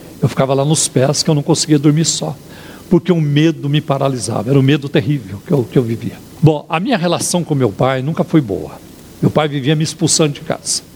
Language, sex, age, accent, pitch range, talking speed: Portuguese, male, 60-79, Brazilian, 135-170 Hz, 240 wpm